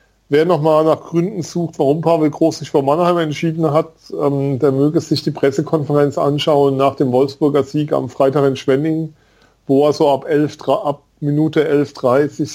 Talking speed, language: 165 wpm, German